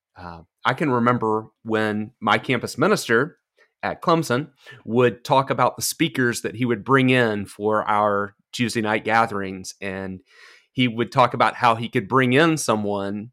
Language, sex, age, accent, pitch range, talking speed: English, male, 30-49, American, 105-130 Hz, 160 wpm